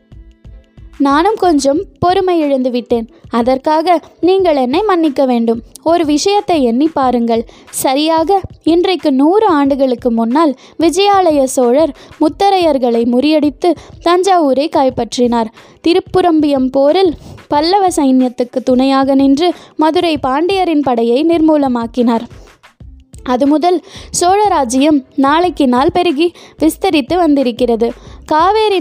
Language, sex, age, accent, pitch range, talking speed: Tamil, female, 20-39, native, 265-335 Hz, 90 wpm